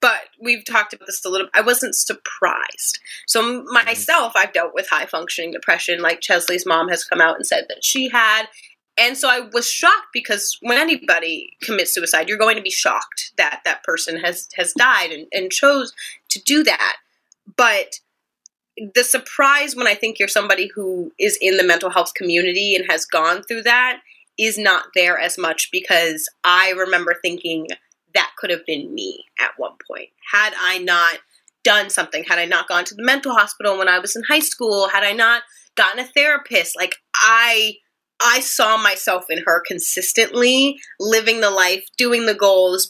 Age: 20-39